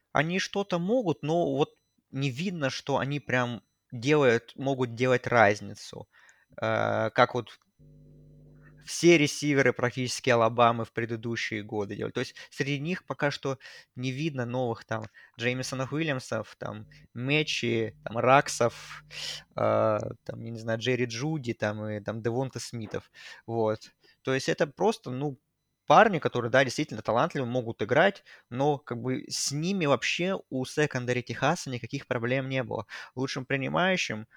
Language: Russian